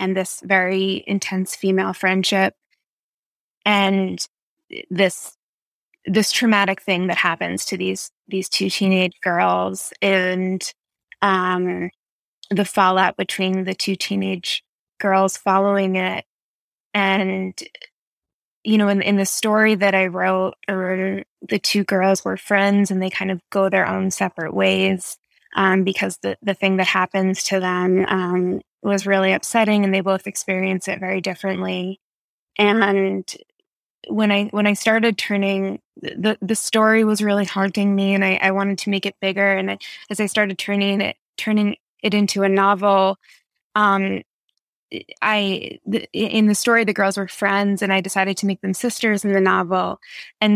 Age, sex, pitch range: 20-39, female, 190-205 Hz